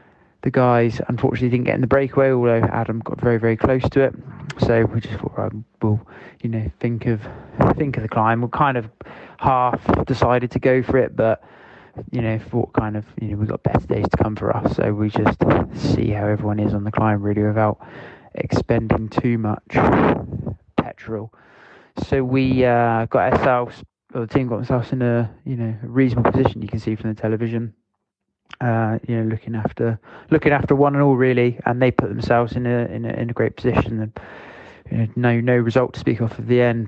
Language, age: English, 20-39